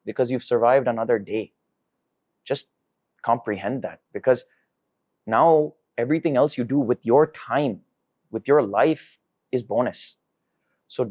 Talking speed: 125 wpm